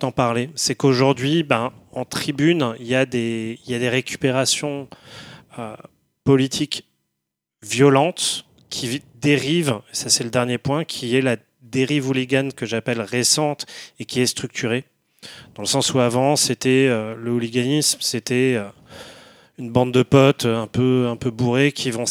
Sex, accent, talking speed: male, French, 165 wpm